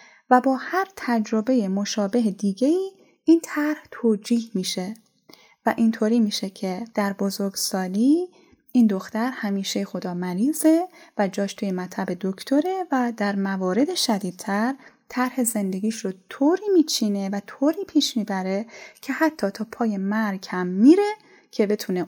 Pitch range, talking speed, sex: 195-270 Hz, 135 wpm, female